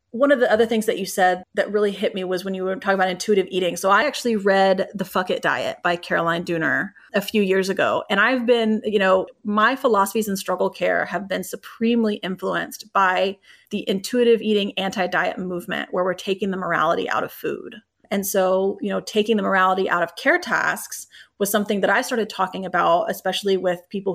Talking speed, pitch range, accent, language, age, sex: 210 wpm, 190-230 Hz, American, English, 30-49, female